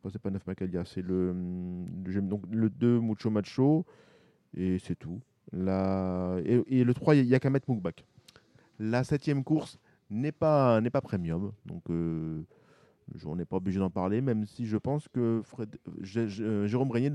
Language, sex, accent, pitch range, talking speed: French, male, French, 95-125 Hz, 170 wpm